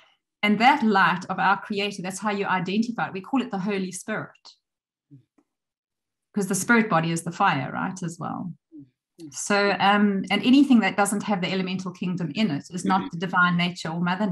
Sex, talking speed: female, 195 wpm